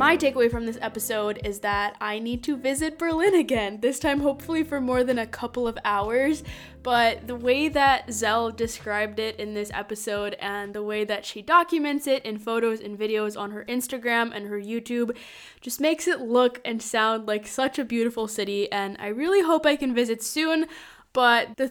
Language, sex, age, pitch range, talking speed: English, female, 10-29, 220-275 Hz, 195 wpm